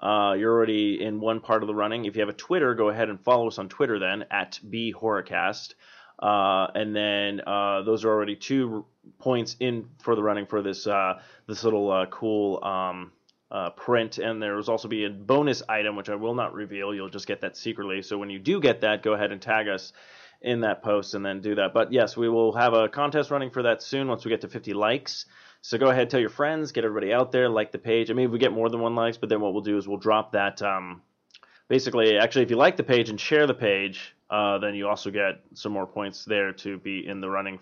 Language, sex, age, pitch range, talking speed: English, male, 20-39, 100-120 Hz, 250 wpm